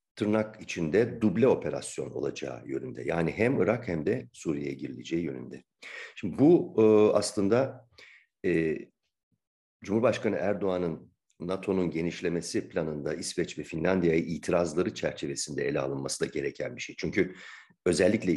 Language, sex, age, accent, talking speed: Turkish, male, 50-69, native, 120 wpm